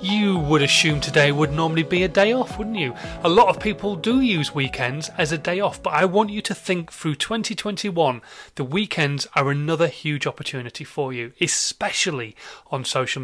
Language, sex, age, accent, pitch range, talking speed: English, male, 30-49, British, 135-185 Hz, 190 wpm